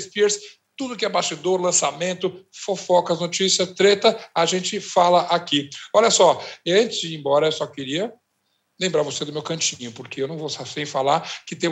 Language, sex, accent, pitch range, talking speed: Portuguese, male, Brazilian, 160-195 Hz, 180 wpm